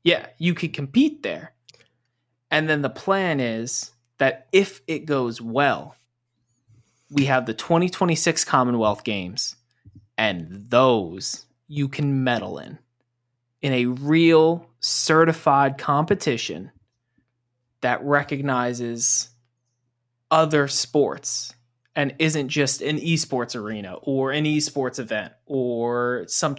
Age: 20-39